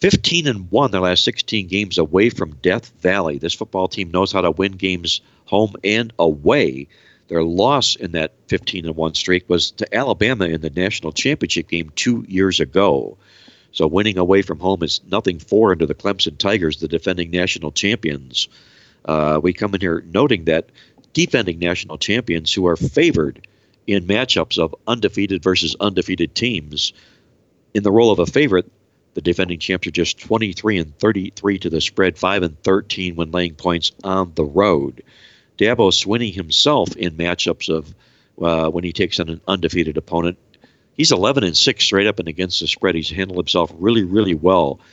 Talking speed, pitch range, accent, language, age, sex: 175 wpm, 85-100 Hz, American, English, 50-69, male